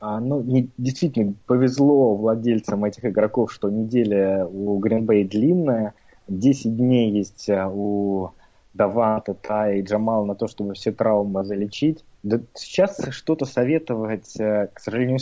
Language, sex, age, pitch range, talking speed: Russian, male, 20-39, 105-125 Hz, 120 wpm